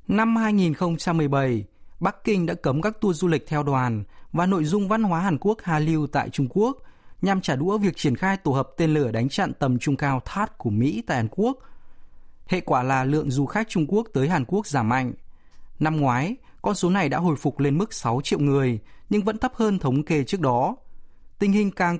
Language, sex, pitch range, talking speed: Vietnamese, male, 130-190 Hz, 225 wpm